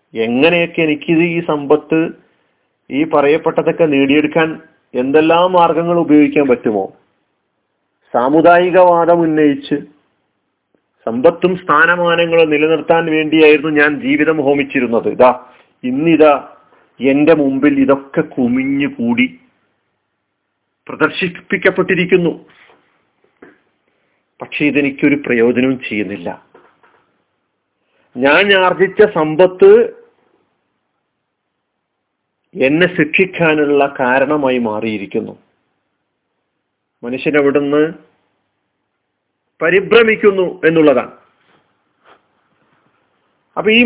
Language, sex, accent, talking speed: Malayalam, male, native, 60 wpm